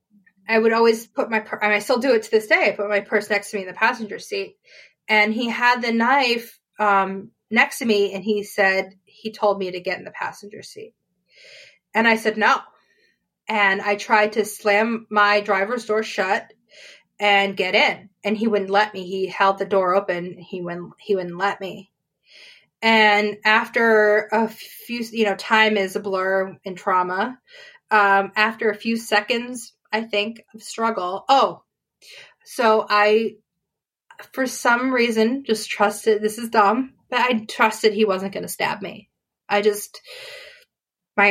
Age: 20-39